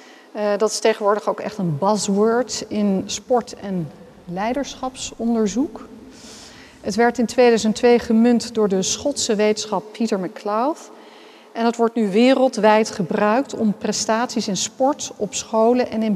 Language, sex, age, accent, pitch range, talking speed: Dutch, female, 40-59, Dutch, 205-245 Hz, 135 wpm